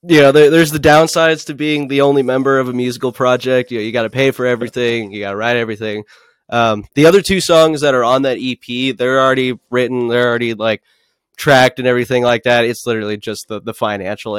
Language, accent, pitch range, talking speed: English, American, 115-135 Hz, 230 wpm